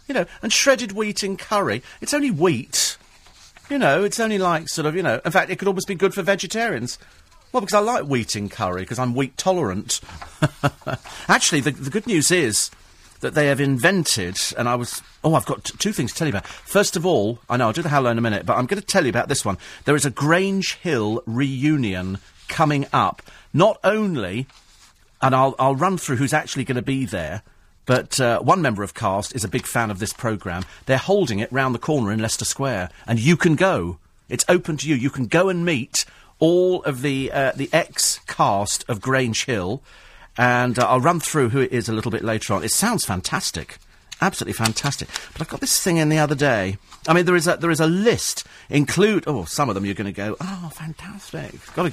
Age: 40-59